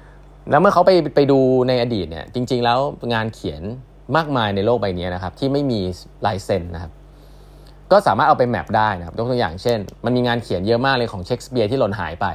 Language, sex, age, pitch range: Thai, male, 20-39, 95-130 Hz